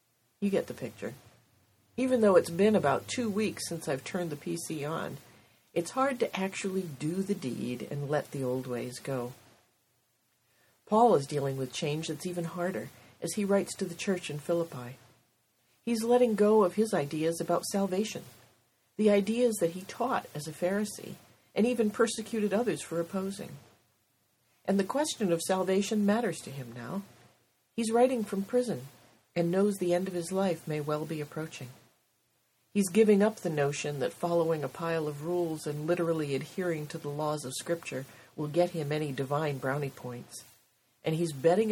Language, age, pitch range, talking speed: English, 50-69, 140-195 Hz, 175 wpm